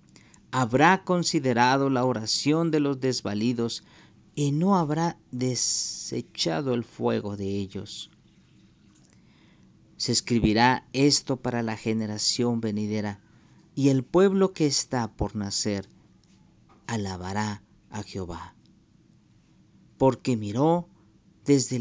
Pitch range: 105-145 Hz